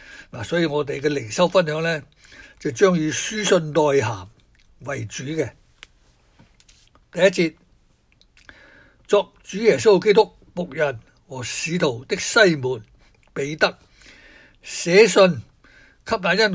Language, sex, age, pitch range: Chinese, male, 60-79, 130-180 Hz